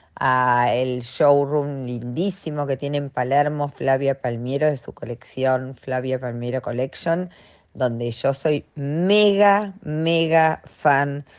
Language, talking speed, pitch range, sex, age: Spanish, 115 wpm, 125-150 Hz, female, 40-59